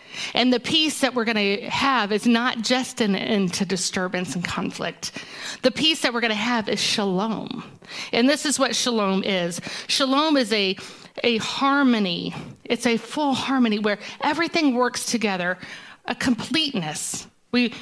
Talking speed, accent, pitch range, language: 160 wpm, American, 205-260 Hz, English